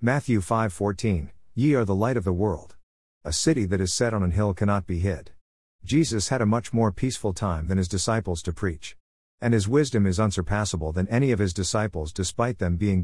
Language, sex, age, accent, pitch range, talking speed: English, male, 50-69, American, 90-110 Hz, 210 wpm